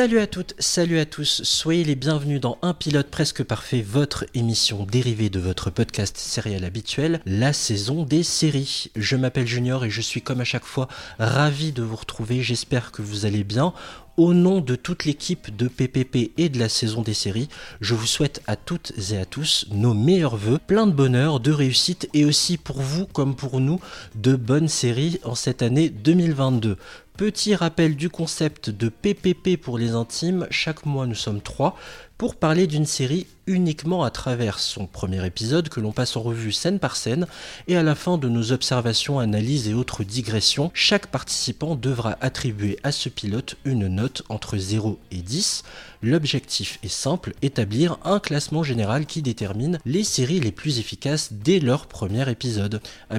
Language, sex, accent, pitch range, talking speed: French, male, French, 115-160 Hz, 185 wpm